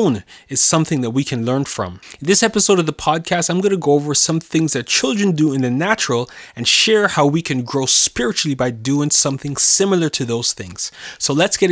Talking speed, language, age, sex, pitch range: 220 wpm, English, 30-49, male, 140-190 Hz